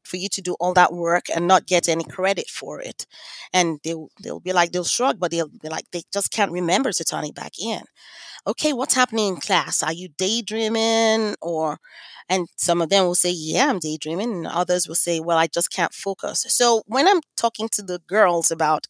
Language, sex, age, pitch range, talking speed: English, female, 30-49, 170-205 Hz, 220 wpm